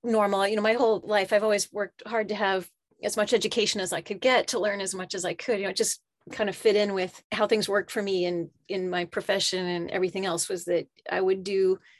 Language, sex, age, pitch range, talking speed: English, female, 30-49, 190-225 Hz, 255 wpm